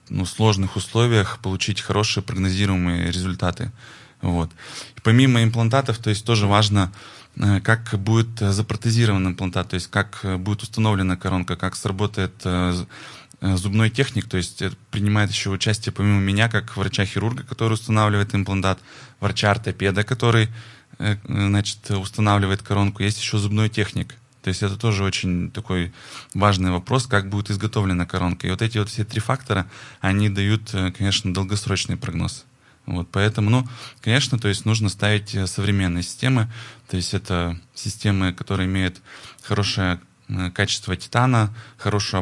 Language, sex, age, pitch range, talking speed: Russian, male, 20-39, 95-110 Hz, 130 wpm